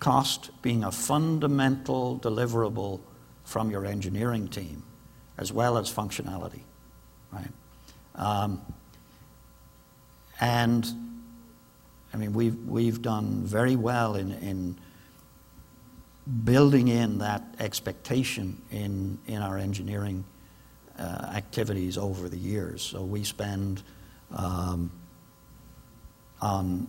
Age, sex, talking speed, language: 60-79, male, 95 wpm, English